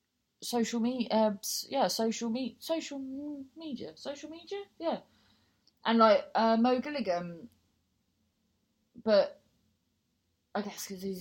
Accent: British